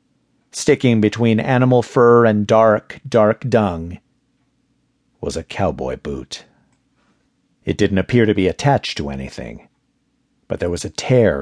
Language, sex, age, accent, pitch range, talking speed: English, male, 50-69, American, 85-120 Hz, 130 wpm